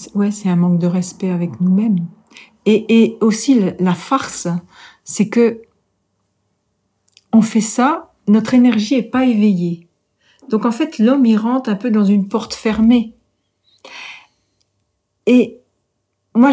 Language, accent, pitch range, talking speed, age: French, French, 190-250 Hz, 135 wpm, 50-69